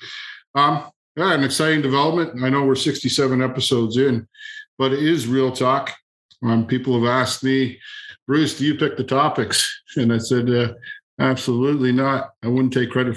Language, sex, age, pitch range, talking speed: English, male, 50-69, 125-145 Hz, 170 wpm